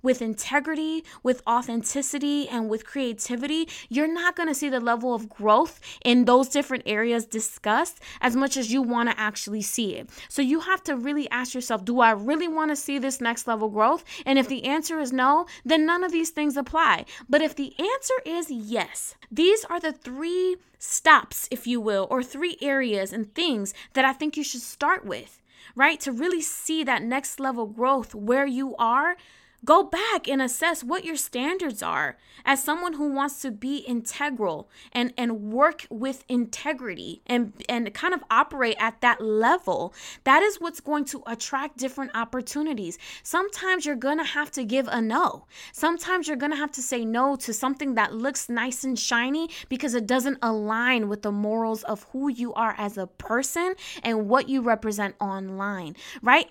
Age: 10-29